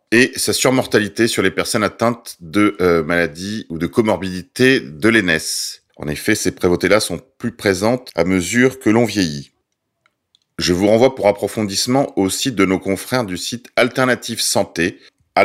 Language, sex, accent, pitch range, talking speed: French, male, French, 95-125 Hz, 165 wpm